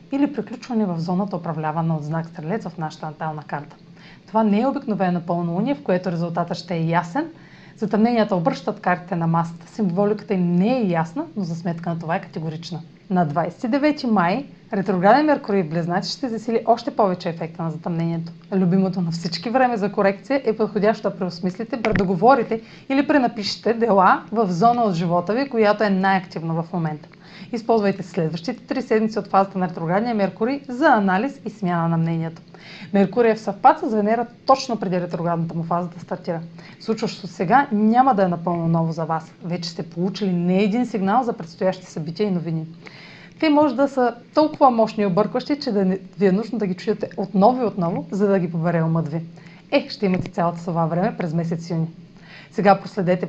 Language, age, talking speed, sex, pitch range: Bulgarian, 30-49, 180 wpm, female, 170-220 Hz